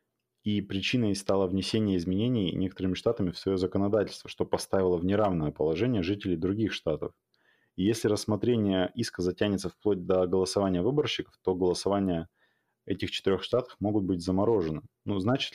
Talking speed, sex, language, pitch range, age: 145 wpm, male, Russian, 90-105 Hz, 20-39